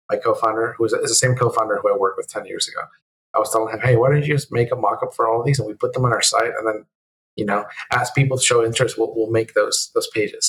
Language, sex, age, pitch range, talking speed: English, male, 30-49, 110-160 Hz, 325 wpm